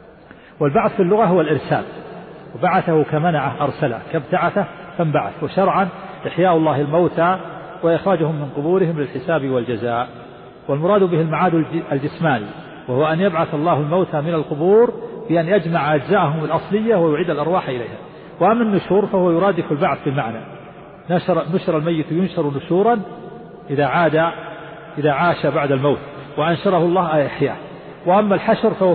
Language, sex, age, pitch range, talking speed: Arabic, male, 50-69, 155-190 Hz, 125 wpm